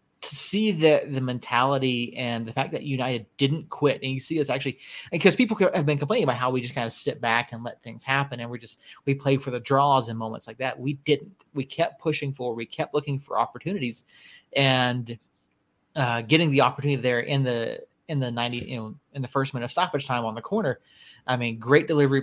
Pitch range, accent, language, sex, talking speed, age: 120-150 Hz, American, English, male, 225 wpm, 30-49